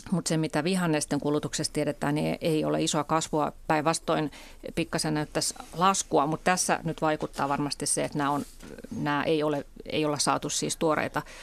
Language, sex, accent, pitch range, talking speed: Finnish, female, native, 150-170 Hz, 170 wpm